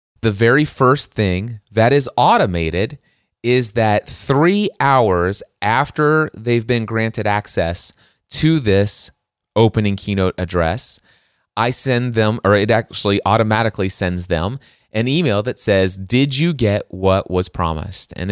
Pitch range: 95-120 Hz